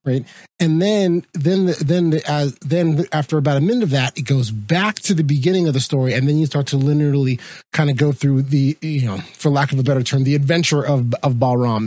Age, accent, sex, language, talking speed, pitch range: 30-49, American, male, English, 245 wpm, 135-170 Hz